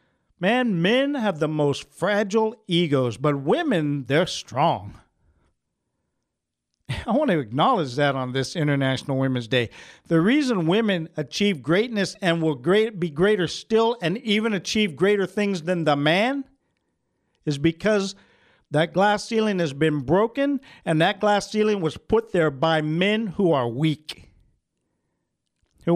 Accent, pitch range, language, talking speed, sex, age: American, 145-200 Hz, English, 140 wpm, male, 50-69